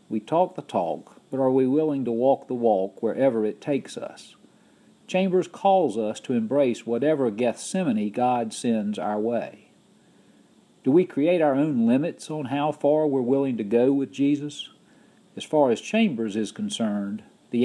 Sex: male